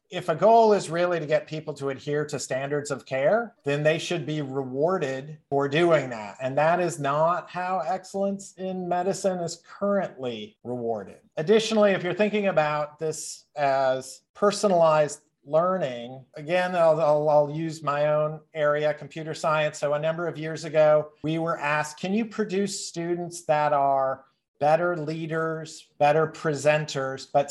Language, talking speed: English, 155 wpm